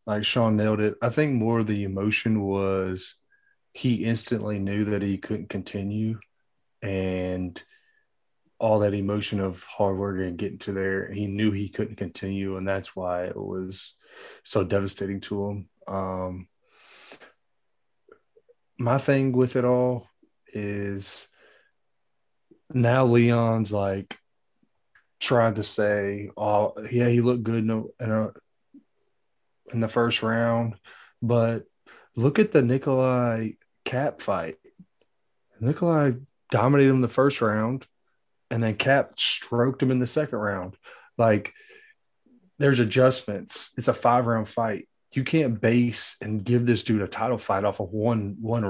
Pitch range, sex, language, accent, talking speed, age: 100-125 Hz, male, English, American, 140 wpm, 30-49